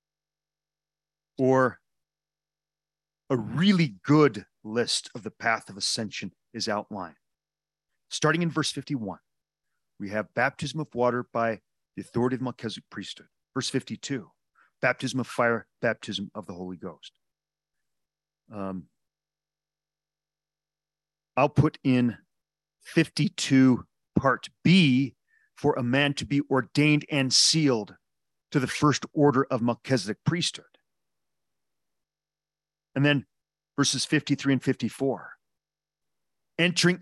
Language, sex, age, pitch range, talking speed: English, male, 40-59, 115-155 Hz, 105 wpm